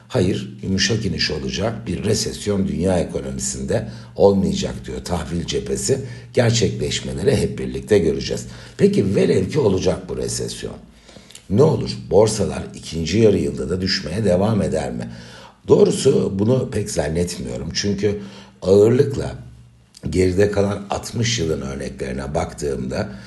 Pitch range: 65-100 Hz